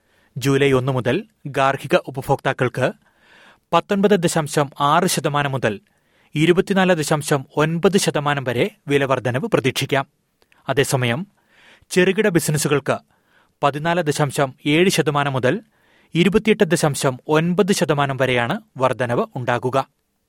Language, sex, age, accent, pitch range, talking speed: Malayalam, male, 30-49, native, 135-160 Hz, 80 wpm